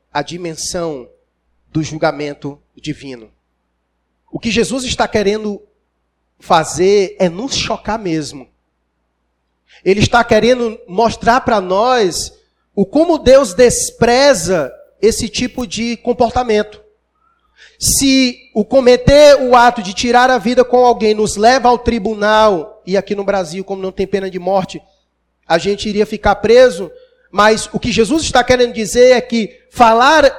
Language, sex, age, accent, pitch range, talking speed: Portuguese, male, 40-59, Brazilian, 185-235 Hz, 135 wpm